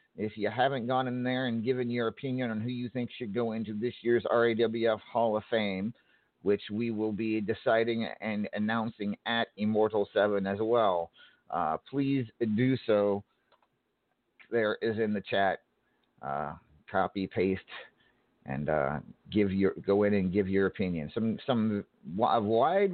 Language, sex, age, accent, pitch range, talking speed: English, male, 50-69, American, 95-120 Hz, 160 wpm